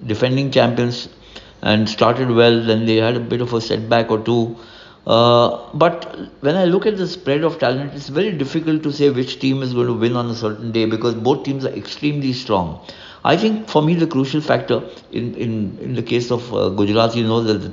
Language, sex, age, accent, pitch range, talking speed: English, male, 60-79, Indian, 105-130 Hz, 220 wpm